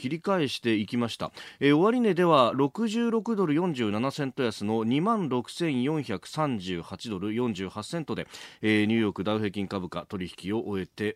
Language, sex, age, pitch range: Japanese, male, 30-49, 105-180 Hz